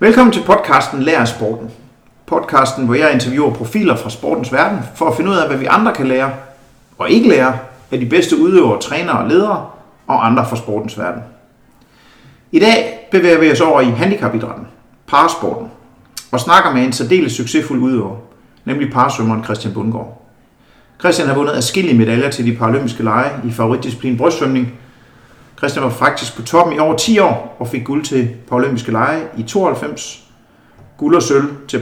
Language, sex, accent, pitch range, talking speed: Danish, male, native, 115-145 Hz, 170 wpm